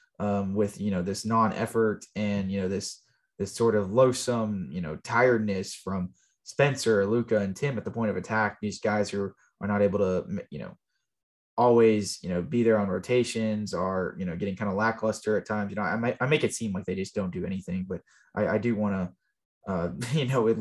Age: 20-39